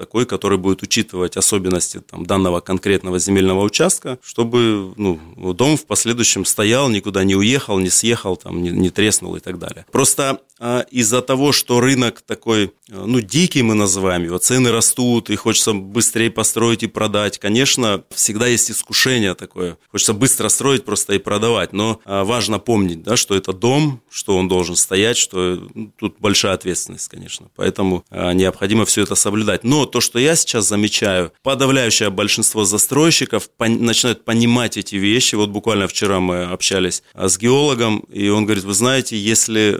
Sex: male